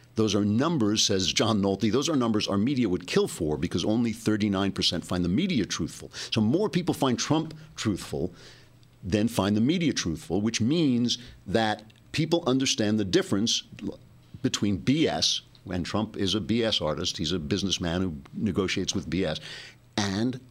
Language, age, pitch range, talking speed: English, 50-69, 100-130 Hz, 165 wpm